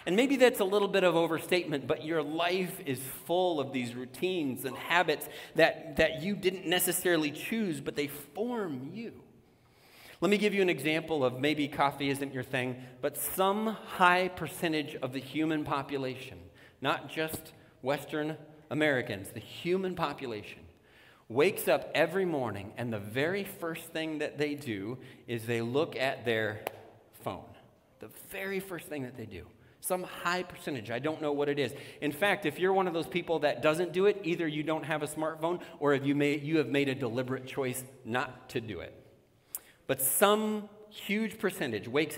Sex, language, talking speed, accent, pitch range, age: male, English, 180 wpm, American, 135-185 Hz, 40-59